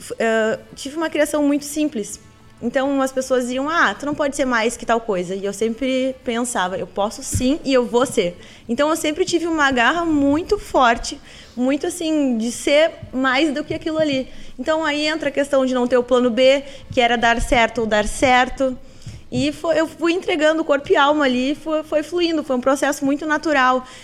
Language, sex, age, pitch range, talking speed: Portuguese, female, 20-39, 250-305 Hz, 205 wpm